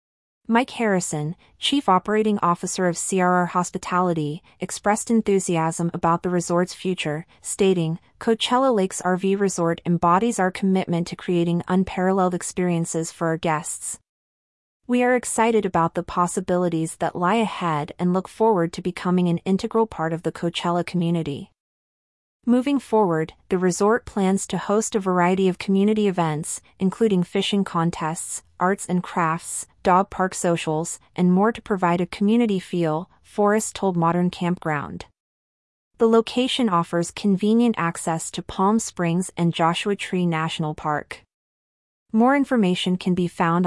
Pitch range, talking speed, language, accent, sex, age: 170-200 Hz, 135 wpm, English, American, female, 30-49